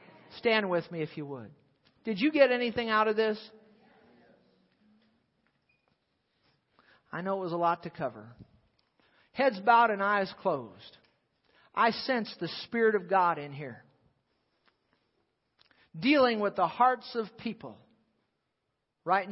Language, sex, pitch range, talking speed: English, male, 170-230 Hz, 125 wpm